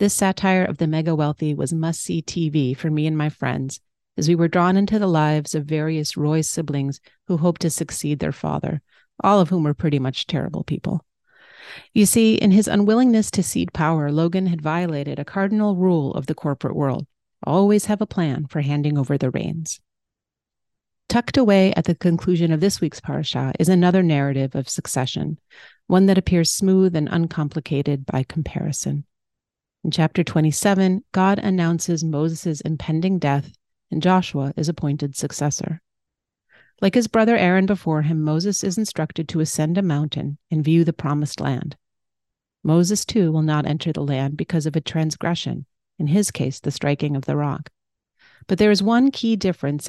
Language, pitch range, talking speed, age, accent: English, 145-185 Hz, 170 wpm, 40-59, American